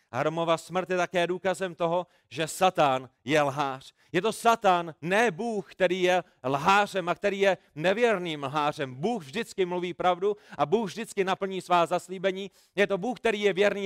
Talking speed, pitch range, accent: 170 wpm, 165-195 Hz, native